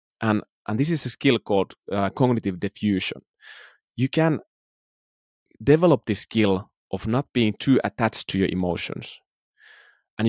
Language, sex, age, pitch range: Finnish, male, 30-49, 100-125 Hz